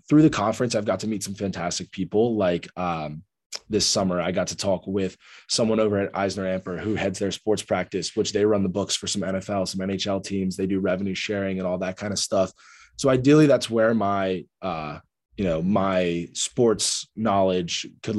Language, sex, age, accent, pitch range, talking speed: English, male, 20-39, American, 90-110 Hz, 205 wpm